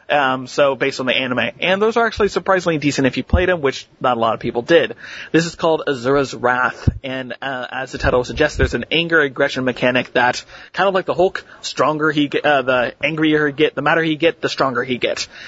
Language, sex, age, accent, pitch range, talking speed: English, male, 30-49, American, 130-155 Hz, 235 wpm